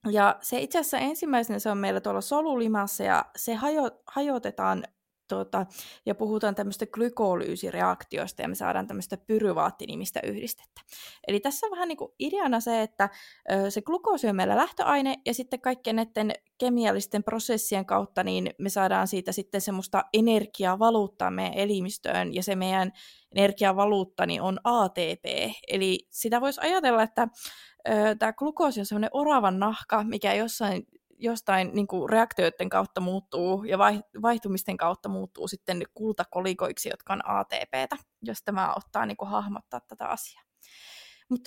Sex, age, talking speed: female, 20-39, 140 wpm